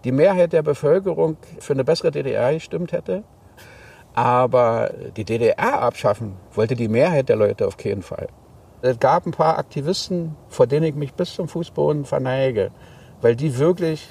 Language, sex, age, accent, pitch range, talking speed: German, male, 50-69, German, 120-160 Hz, 160 wpm